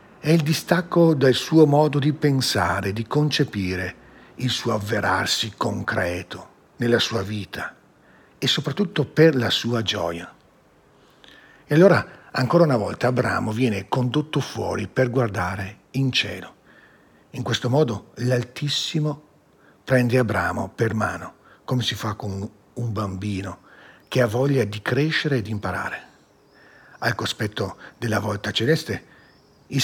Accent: native